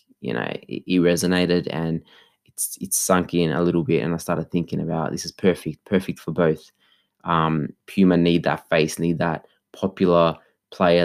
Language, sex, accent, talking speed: English, male, Australian, 180 wpm